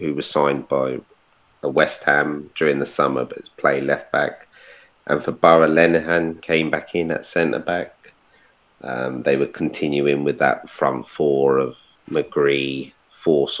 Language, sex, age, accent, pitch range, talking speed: English, male, 30-49, British, 70-80 Hz, 155 wpm